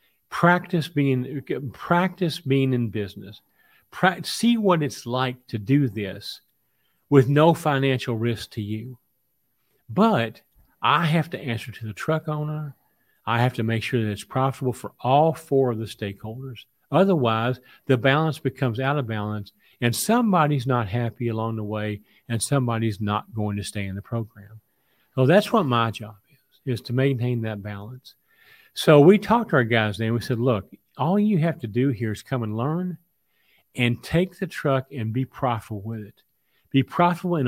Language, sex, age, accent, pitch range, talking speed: English, male, 50-69, American, 110-145 Hz, 175 wpm